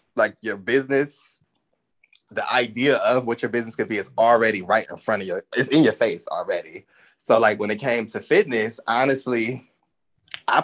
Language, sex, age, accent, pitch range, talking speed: English, male, 20-39, American, 105-140 Hz, 180 wpm